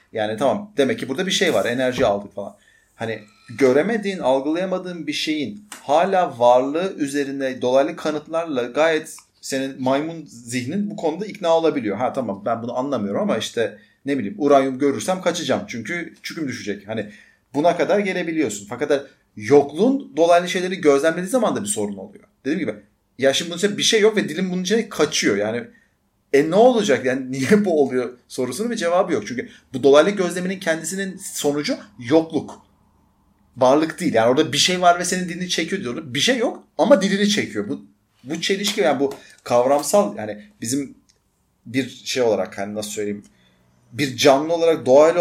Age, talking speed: 30-49, 165 wpm